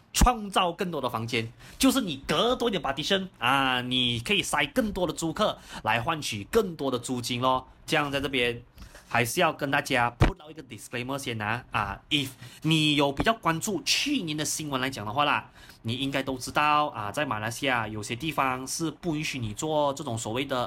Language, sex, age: Chinese, male, 30-49